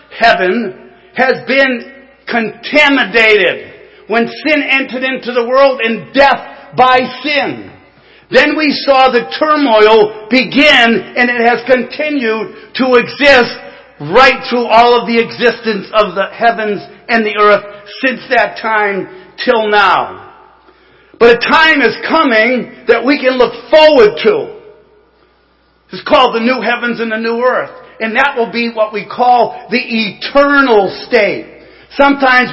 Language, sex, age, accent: English, male, 50-69, American